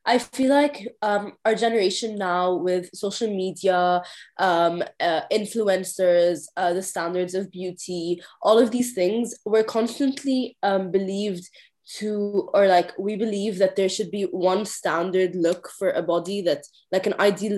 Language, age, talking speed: English, 20-39, 155 wpm